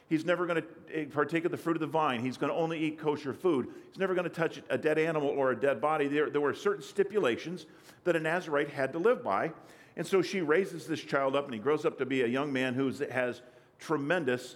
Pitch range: 140-180 Hz